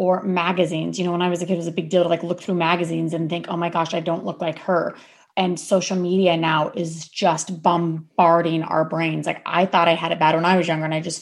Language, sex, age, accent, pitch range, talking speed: English, female, 30-49, American, 170-190 Hz, 280 wpm